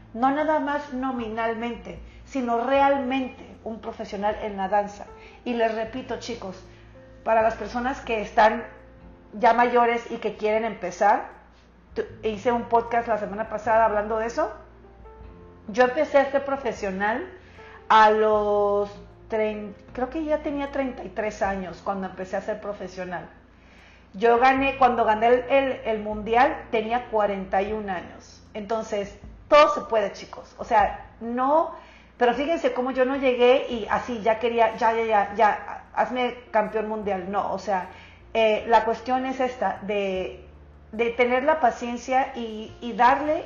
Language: English